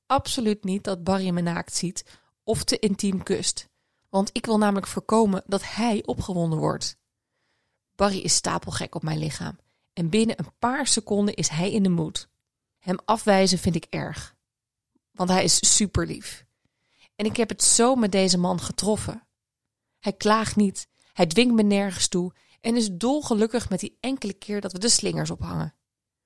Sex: female